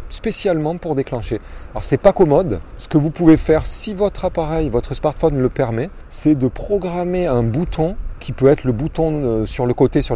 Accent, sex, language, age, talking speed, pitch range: French, male, French, 30-49, 195 wpm, 120-165 Hz